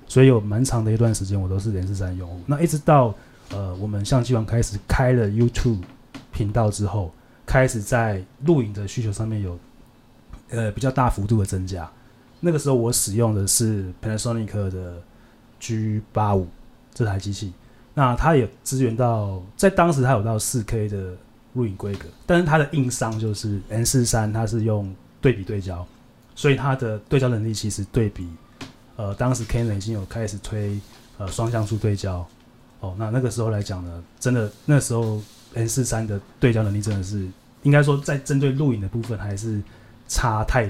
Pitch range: 100-125 Hz